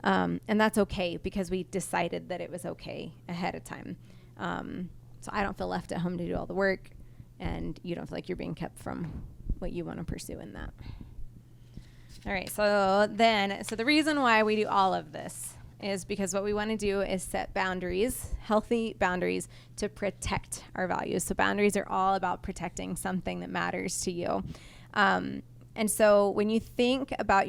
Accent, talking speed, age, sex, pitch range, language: American, 190 wpm, 20-39, female, 175-210 Hz, English